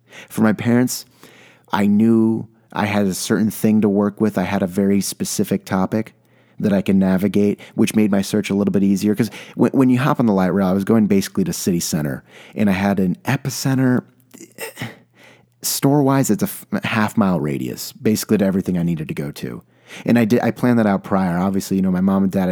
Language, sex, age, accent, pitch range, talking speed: English, male, 30-49, American, 95-120 Hz, 220 wpm